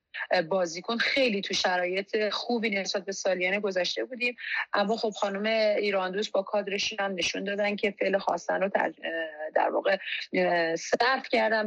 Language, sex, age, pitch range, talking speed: Persian, female, 30-49, 190-230 Hz, 145 wpm